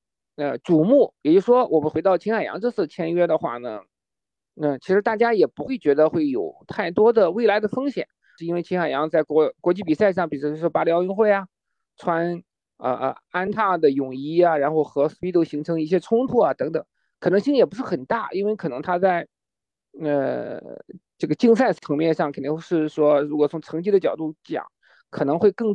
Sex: male